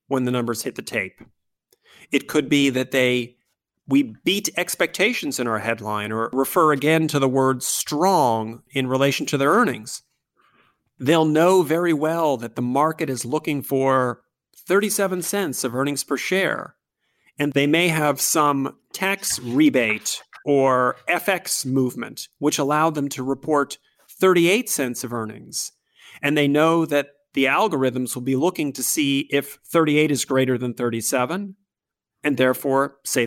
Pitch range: 130-165 Hz